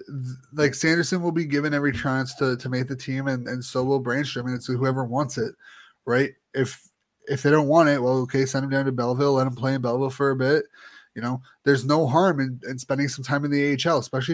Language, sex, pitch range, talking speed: English, male, 130-160 Hz, 250 wpm